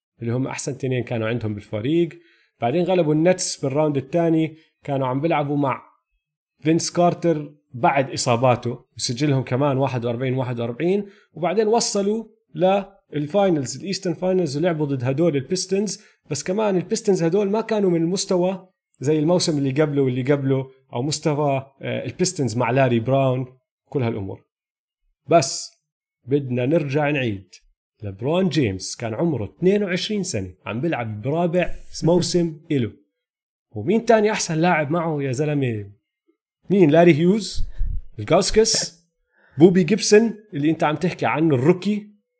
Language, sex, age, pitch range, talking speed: Arabic, male, 30-49, 135-195 Hz, 125 wpm